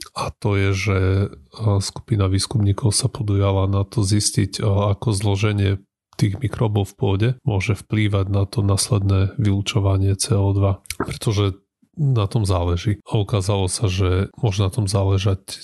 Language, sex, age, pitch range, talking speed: Slovak, male, 30-49, 100-110 Hz, 140 wpm